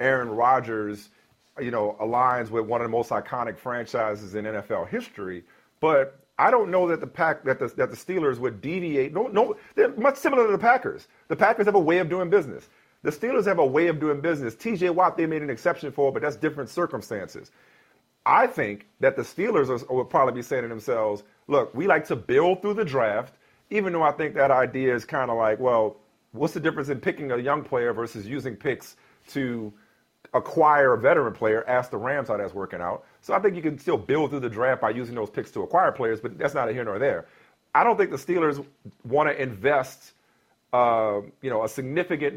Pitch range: 120-160 Hz